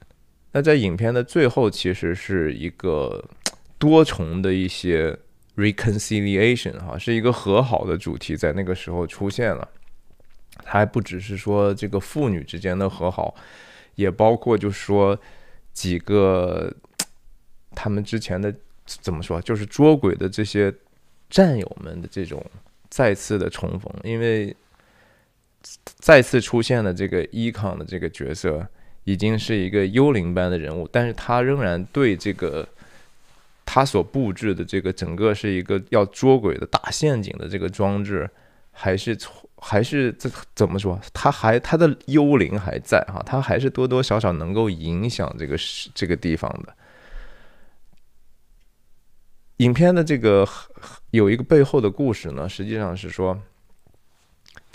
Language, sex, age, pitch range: Chinese, male, 20-39, 90-115 Hz